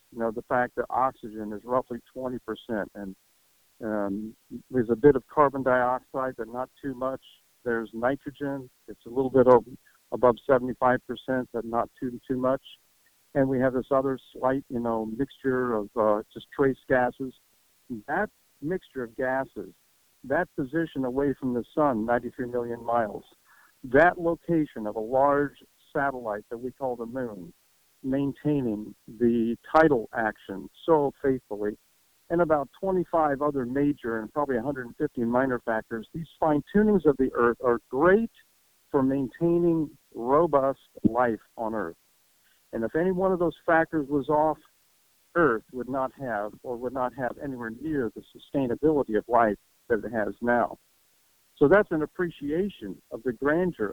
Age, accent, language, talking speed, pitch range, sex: 60-79, American, English, 150 wpm, 120-145 Hz, male